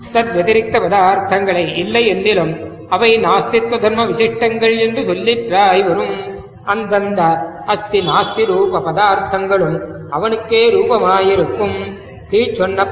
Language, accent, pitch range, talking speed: Tamil, native, 180-210 Hz, 85 wpm